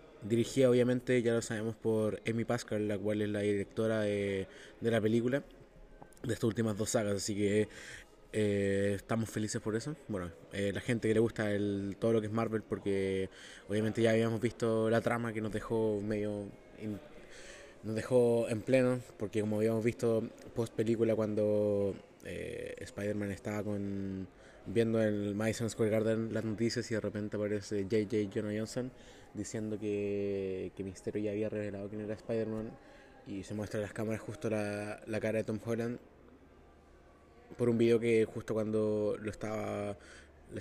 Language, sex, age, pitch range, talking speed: English, male, 20-39, 105-115 Hz, 175 wpm